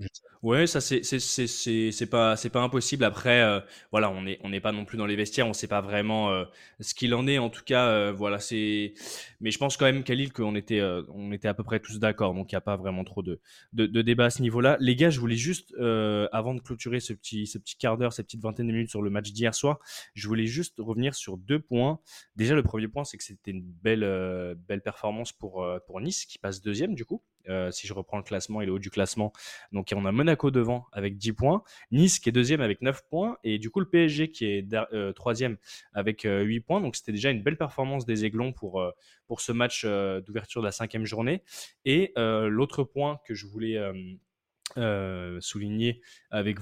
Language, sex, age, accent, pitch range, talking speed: French, male, 20-39, French, 105-130 Hz, 250 wpm